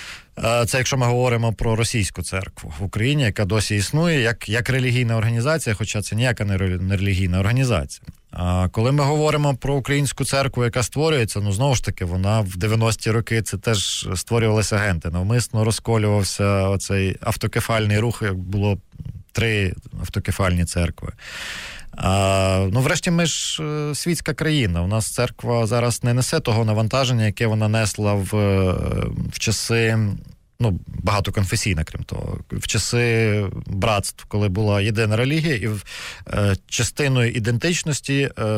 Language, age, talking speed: Ukrainian, 20-39, 140 wpm